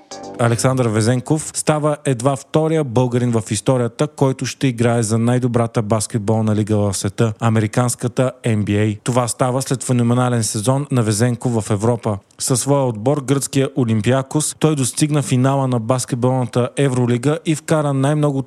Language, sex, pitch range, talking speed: Bulgarian, male, 115-135 Hz, 140 wpm